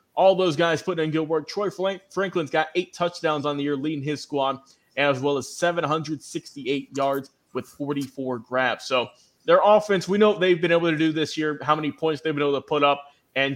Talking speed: 215 wpm